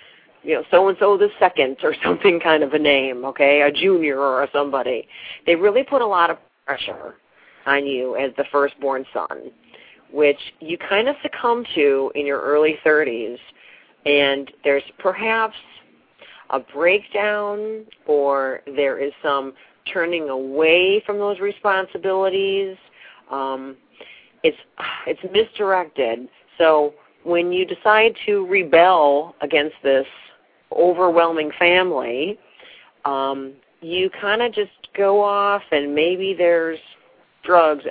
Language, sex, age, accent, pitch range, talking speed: English, female, 40-59, American, 145-210 Hz, 125 wpm